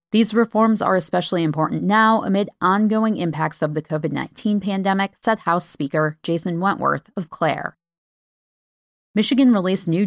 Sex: female